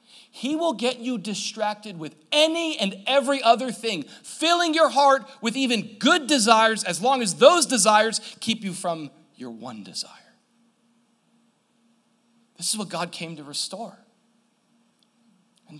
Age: 40-59